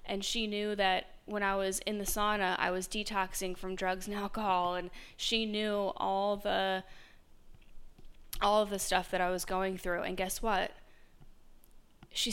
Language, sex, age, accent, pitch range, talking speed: English, female, 20-39, American, 185-210 Hz, 170 wpm